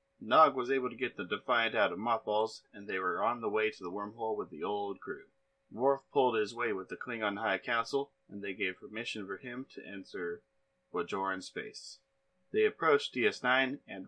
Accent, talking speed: American, 195 wpm